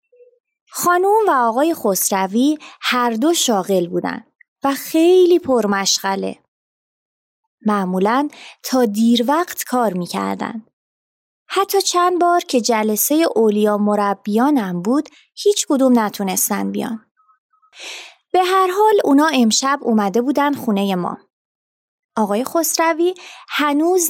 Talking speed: 100 wpm